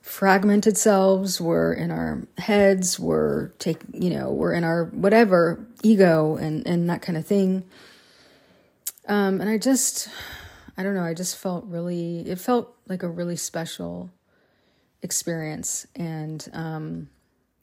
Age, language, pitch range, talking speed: 30-49, English, 165-195 Hz, 140 wpm